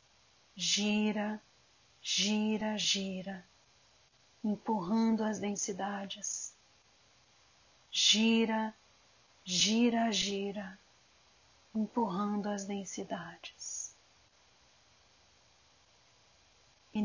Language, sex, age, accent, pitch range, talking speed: Portuguese, female, 40-59, Brazilian, 185-220 Hz, 45 wpm